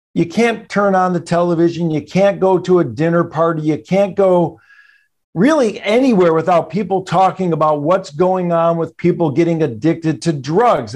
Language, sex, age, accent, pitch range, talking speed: English, male, 50-69, American, 155-190 Hz, 170 wpm